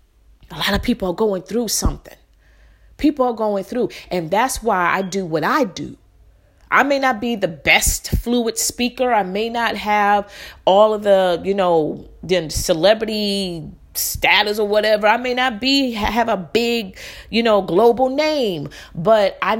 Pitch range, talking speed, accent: 185-260 Hz, 165 wpm, American